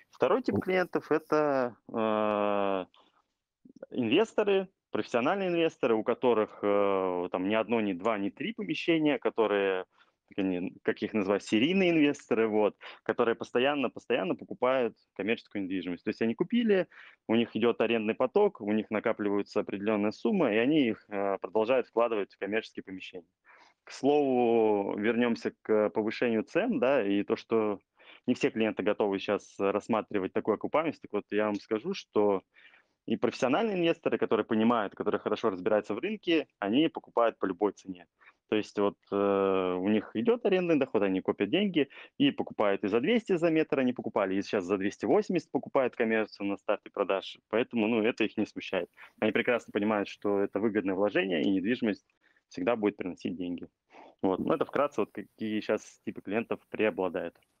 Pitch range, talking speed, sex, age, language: 100-145 Hz, 155 wpm, male, 20-39, Russian